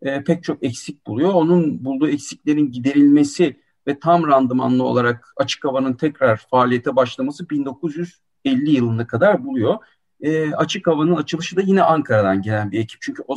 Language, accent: Turkish, native